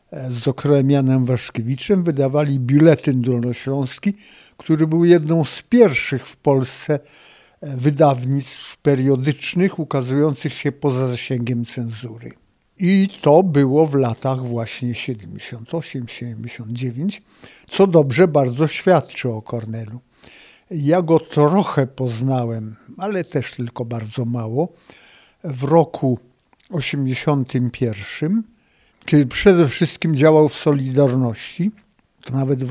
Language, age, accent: Polish, 50-69, native